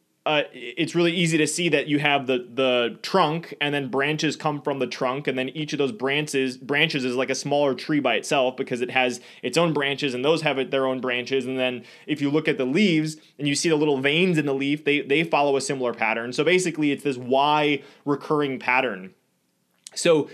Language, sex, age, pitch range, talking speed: English, male, 20-39, 130-160 Hz, 225 wpm